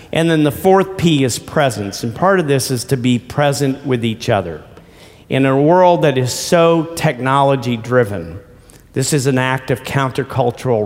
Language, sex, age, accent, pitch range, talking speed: English, male, 50-69, American, 120-150 Hz, 175 wpm